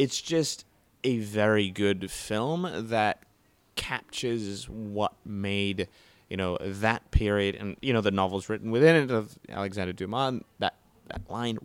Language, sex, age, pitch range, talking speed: English, male, 20-39, 95-115 Hz, 145 wpm